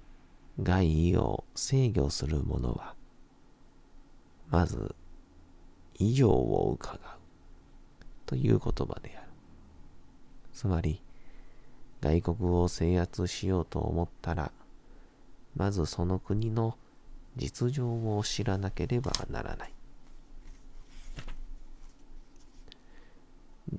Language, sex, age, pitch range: Japanese, male, 40-59, 80-105 Hz